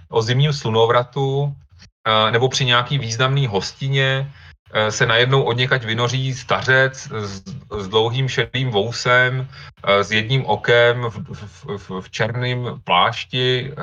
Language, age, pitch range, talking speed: Slovak, 30-49, 100-130 Hz, 115 wpm